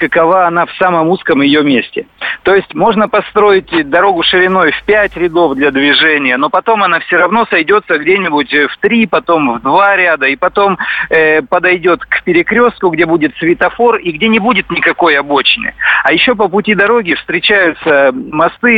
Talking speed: 170 wpm